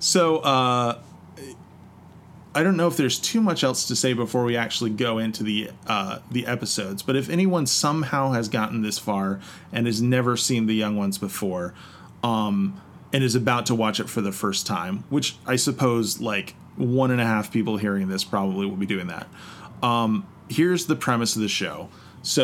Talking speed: 195 wpm